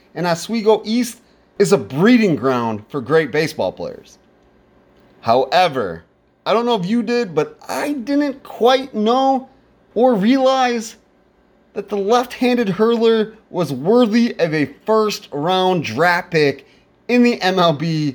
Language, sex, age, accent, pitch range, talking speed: English, male, 30-49, American, 150-225 Hz, 130 wpm